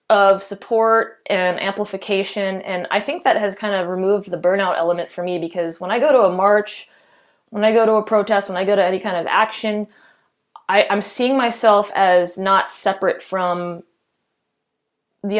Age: 20-39